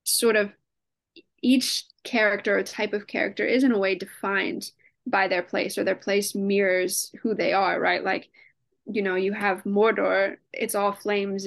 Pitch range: 195-250 Hz